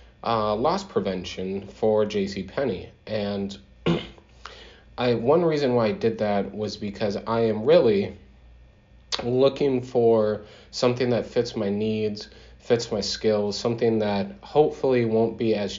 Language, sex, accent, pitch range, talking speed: English, male, American, 100-120 Hz, 130 wpm